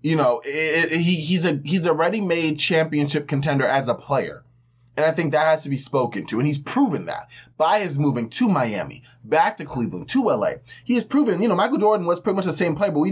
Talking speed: 225 wpm